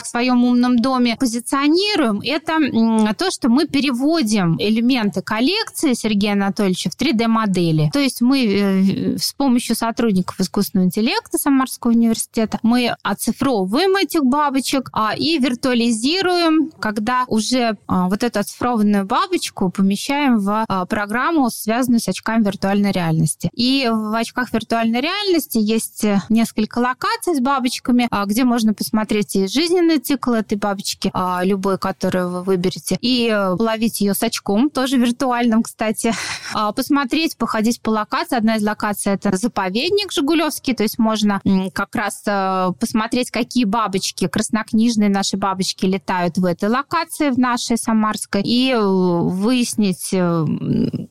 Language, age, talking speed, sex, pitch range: Russian, 20-39, 125 wpm, female, 200-260 Hz